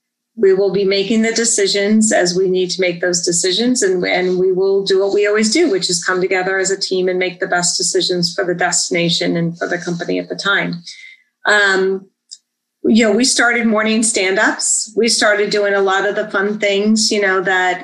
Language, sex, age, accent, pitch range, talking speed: English, female, 40-59, American, 185-220 Hz, 210 wpm